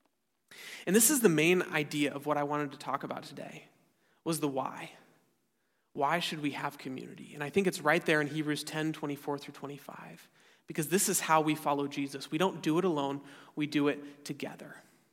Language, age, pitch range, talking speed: English, 30-49, 145-180 Hz, 200 wpm